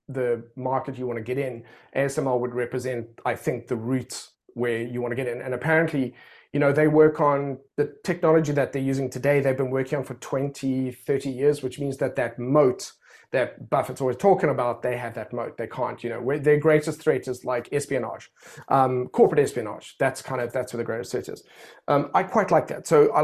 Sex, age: male, 30-49